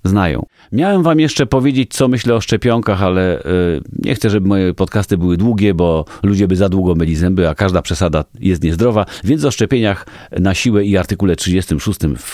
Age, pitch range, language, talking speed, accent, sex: 40-59, 105-170 Hz, Polish, 185 wpm, native, male